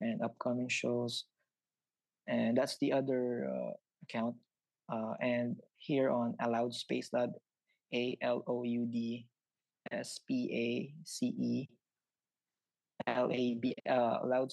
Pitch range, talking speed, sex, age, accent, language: 120-130 Hz, 125 wpm, male, 20-39, Filipino, English